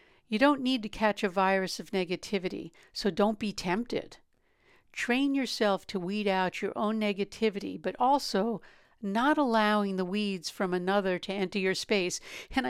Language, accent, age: English, American, 60-79